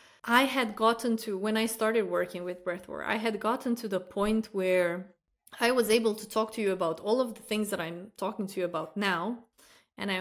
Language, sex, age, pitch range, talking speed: English, female, 20-39, 195-240 Hz, 225 wpm